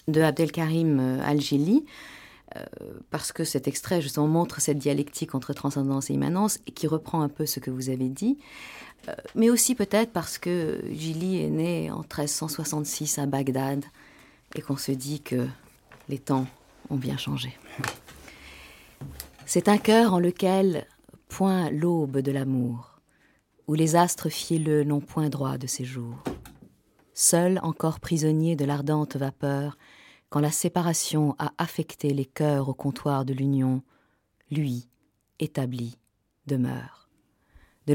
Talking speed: 140 wpm